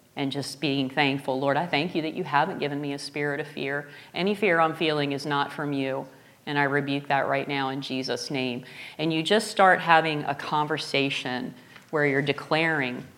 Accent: American